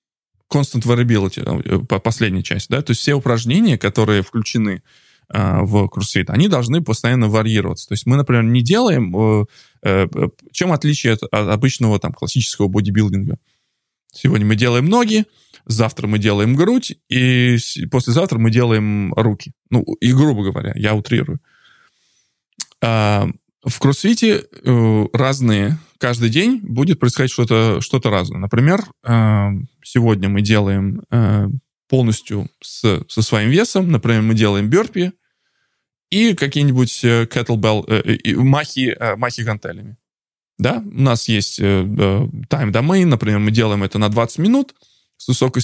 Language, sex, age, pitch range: English, male, 20-39, 105-135 Hz